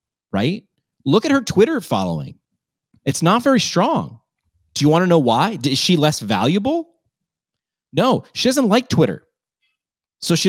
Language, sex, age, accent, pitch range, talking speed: English, male, 30-49, American, 130-175 Hz, 155 wpm